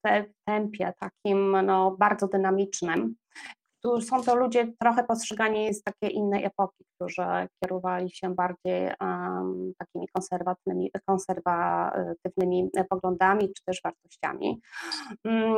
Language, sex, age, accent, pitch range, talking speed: Polish, female, 20-39, native, 185-220 Hz, 110 wpm